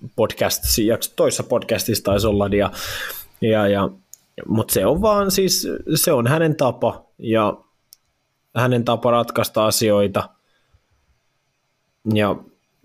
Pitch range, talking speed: 105-125 Hz, 100 wpm